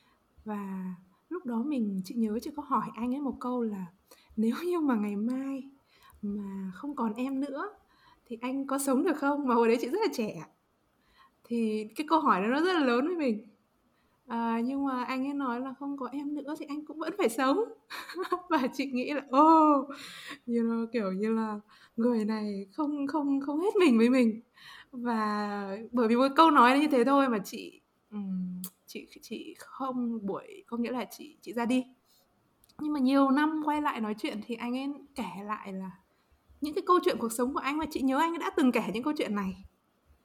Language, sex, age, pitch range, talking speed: Vietnamese, female, 20-39, 220-290 Hz, 205 wpm